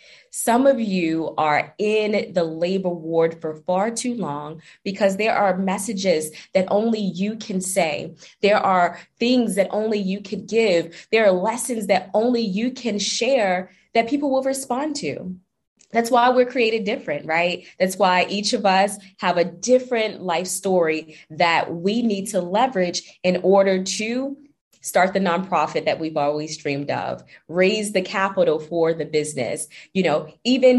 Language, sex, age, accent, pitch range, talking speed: English, female, 20-39, American, 165-215 Hz, 160 wpm